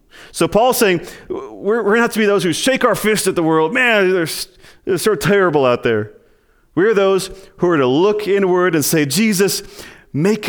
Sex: male